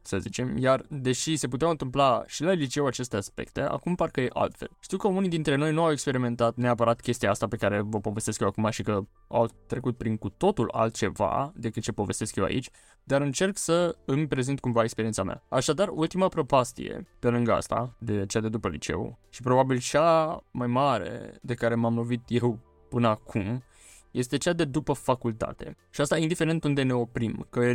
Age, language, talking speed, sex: 20-39, Romanian, 195 wpm, male